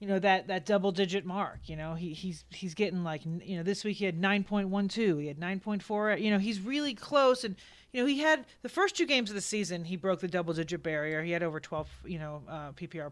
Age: 30-49